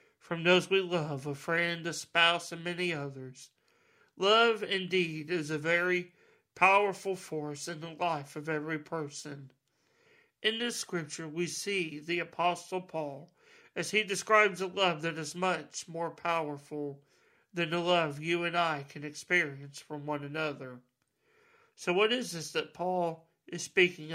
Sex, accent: male, American